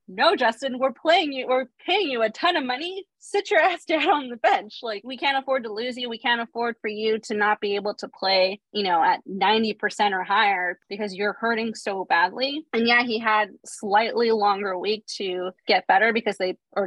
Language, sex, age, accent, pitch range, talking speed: English, female, 20-39, American, 205-260 Hz, 215 wpm